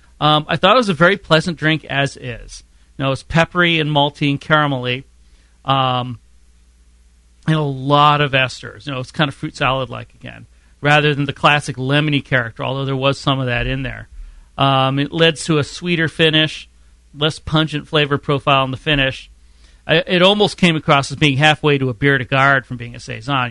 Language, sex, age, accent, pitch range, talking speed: English, male, 40-59, American, 125-155 Hz, 205 wpm